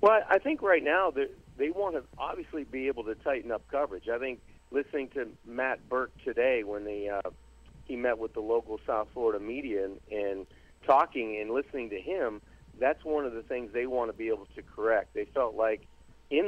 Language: English